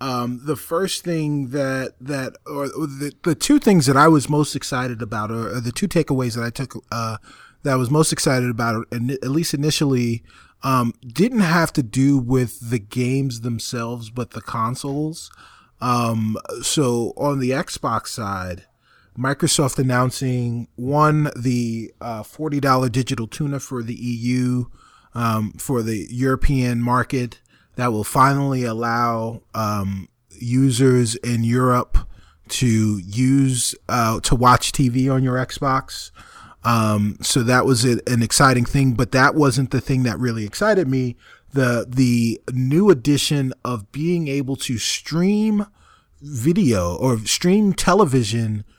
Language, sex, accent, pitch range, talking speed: English, male, American, 120-140 Hz, 140 wpm